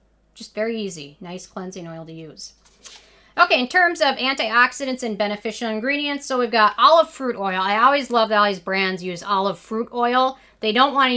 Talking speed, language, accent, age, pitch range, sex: 200 wpm, English, American, 40-59, 180-235 Hz, female